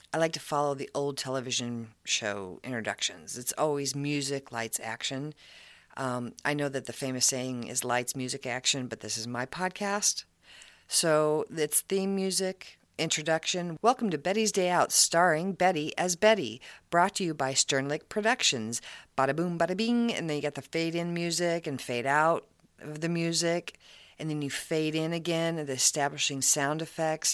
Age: 40-59